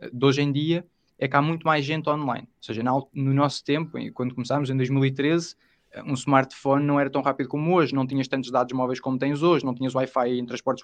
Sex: male